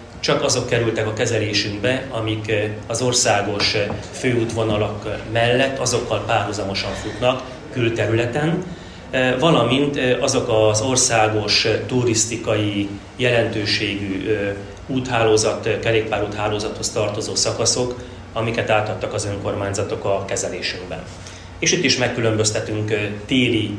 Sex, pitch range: male, 105-120 Hz